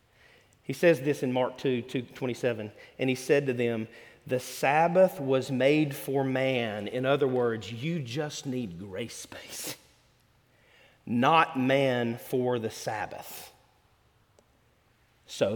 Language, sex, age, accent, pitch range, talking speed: English, male, 40-59, American, 125-175 Hz, 125 wpm